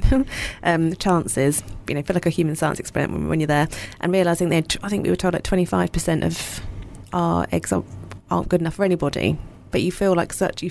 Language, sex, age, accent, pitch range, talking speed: English, female, 20-39, British, 150-175 Hz, 220 wpm